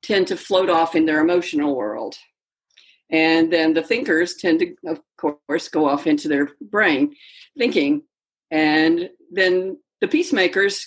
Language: English